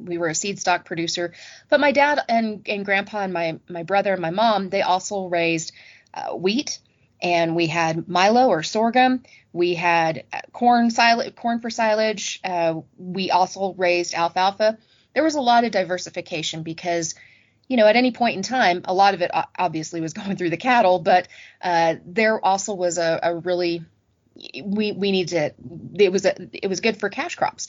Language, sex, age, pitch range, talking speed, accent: English, female, 30-49, 175-215 Hz, 190 wpm, American